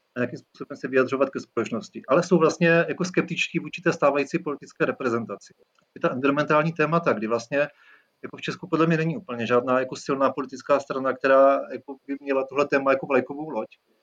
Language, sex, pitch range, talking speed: Czech, male, 135-155 Hz, 190 wpm